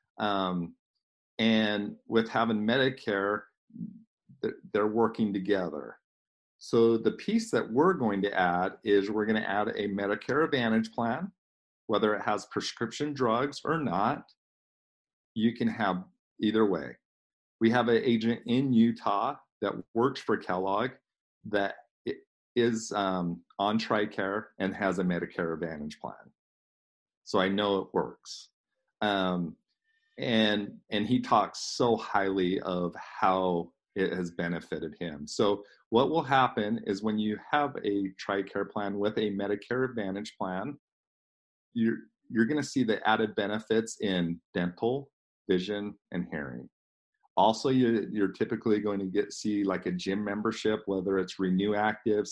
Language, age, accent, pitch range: English, 50-69, American, 95-115 Hz